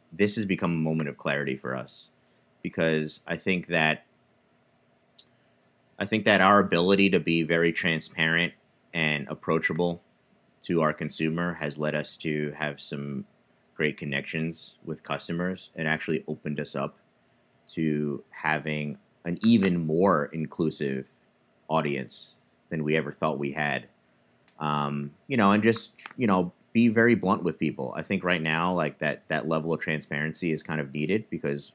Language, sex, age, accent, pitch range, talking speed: English, male, 30-49, American, 75-90 Hz, 155 wpm